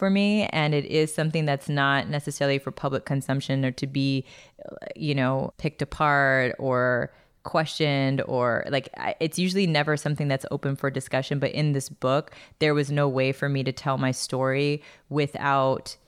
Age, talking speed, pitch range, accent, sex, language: 20-39, 170 wpm, 135-160 Hz, American, female, English